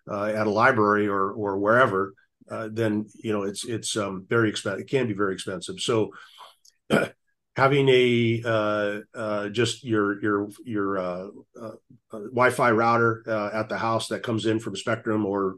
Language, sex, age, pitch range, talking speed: English, male, 40-59, 100-115 Hz, 170 wpm